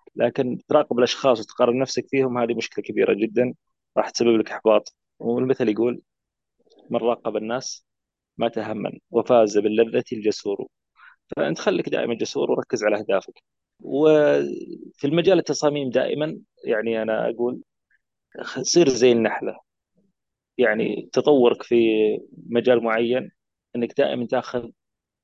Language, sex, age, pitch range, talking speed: Arabic, male, 30-49, 115-145 Hz, 115 wpm